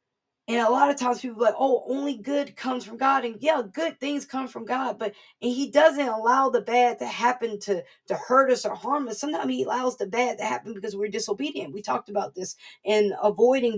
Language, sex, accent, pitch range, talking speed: English, female, American, 225-280 Hz, 230 wpm